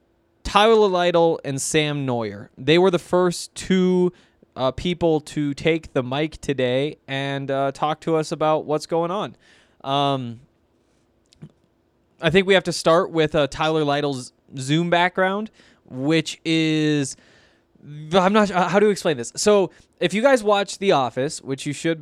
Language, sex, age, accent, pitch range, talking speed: English, male, 20-39, American, 140-170 Hz, 160 wpm